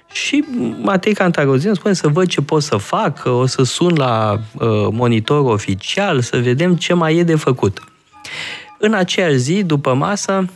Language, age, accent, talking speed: Romanian, 20-39, native, 160 wpm